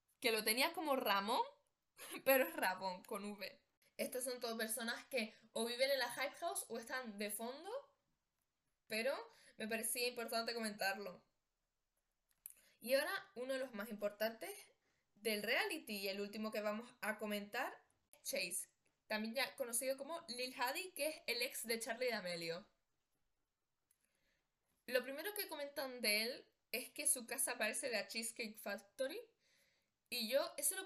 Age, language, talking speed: 10-29, Spanish, 155 wpm